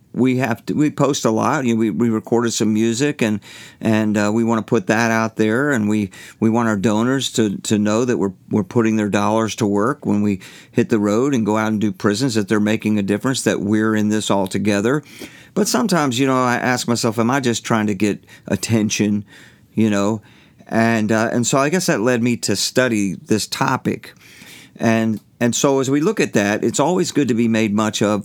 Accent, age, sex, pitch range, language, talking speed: American, 50-69, male, 105-125 Hz, English, 230 wpm